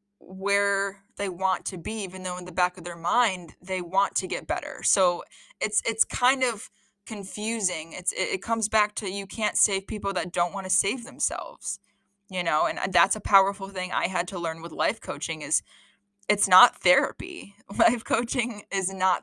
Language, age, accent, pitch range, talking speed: English, 20-39, American, 175-205 Hz, 190 wpm